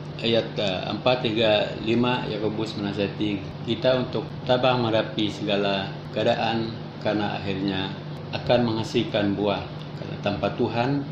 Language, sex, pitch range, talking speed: Malay, male, 105-125 Hz, 110 wpm